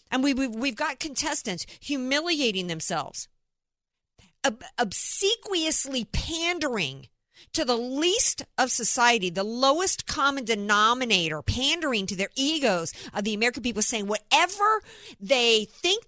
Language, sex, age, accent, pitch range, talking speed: English, female, 50-69, American, 205-285 Hz, 110 wpm